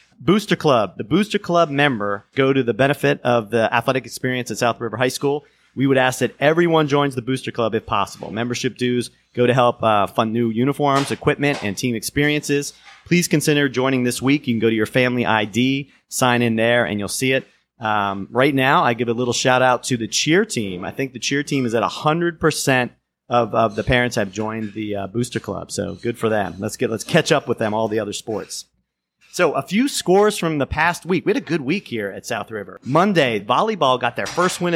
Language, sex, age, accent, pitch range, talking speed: English, male, 30-49, American, 115-145 Hz, 225 wpm